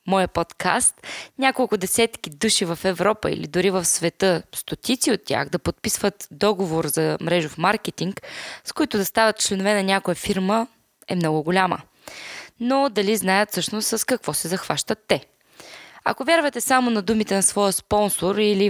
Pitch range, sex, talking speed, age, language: 180-230 Hz, female, 155 wpm, 20-39, Bulgarian